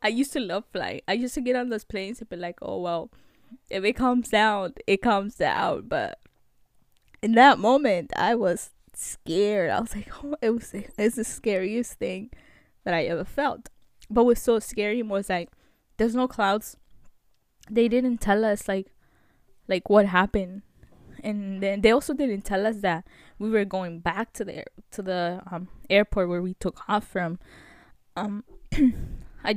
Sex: female